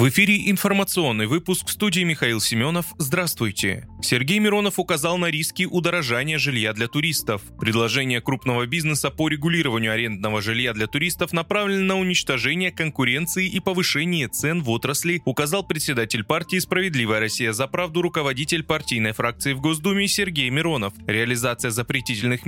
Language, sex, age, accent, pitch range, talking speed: Russian, male, 20-39, native, 120-175 Hz, 135 wpm